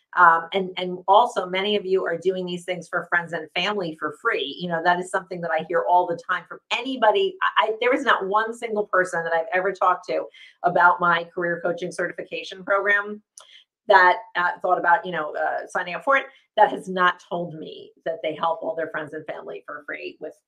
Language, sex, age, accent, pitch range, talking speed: English, female, 40-59, American, 175-215 Hz, 225 wpm